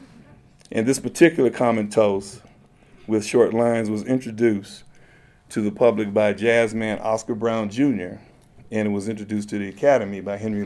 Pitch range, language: 105-130 Hz, English